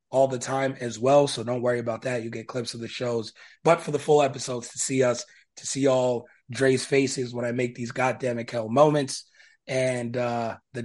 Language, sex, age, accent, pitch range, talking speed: English, male, 20-39, American, 120-140 Hz, 215 wpm